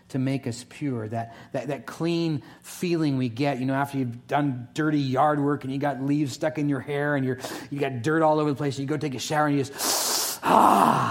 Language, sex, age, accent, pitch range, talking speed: English, male, 40-59, American, 115-145 Hz, 245 wpm